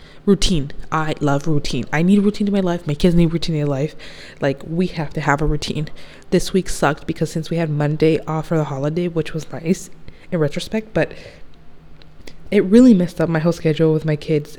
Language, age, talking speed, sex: English, 20-39, 215 wpm, female